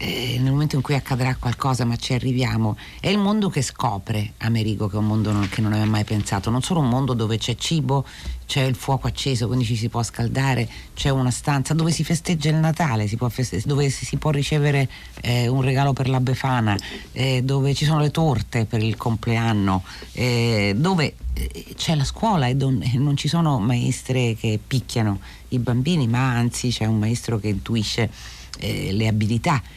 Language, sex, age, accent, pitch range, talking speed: Italian, female, 40-59, native, 110-145 Hz, 185 wpm